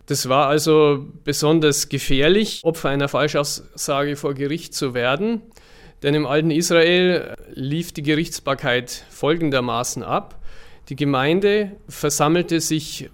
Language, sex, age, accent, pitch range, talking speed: German, male, 40-59, German, 140-160 Hz, 115 wpm